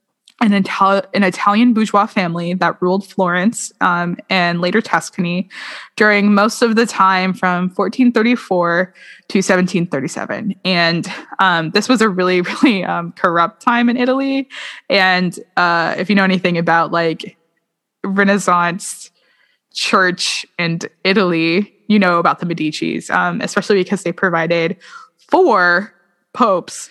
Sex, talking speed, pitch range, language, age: female, 125 wpm, 175-215 Hz, English, 20-39